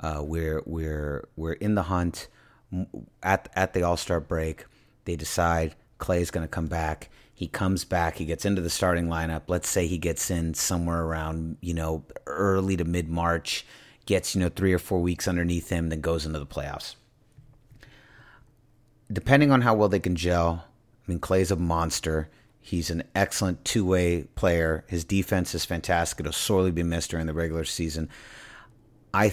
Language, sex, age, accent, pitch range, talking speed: English, male, 30-49, American, 85-110 Hz, 180 wpm